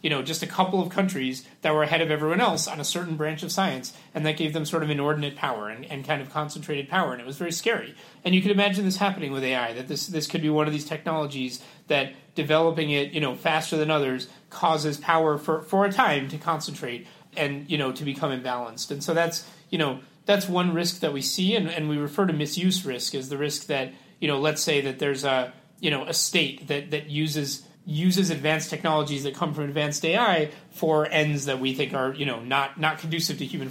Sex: male